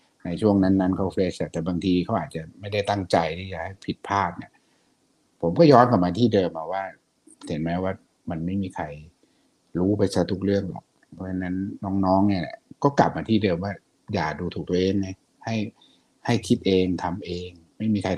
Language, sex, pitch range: Thai, male, 90-105 Hz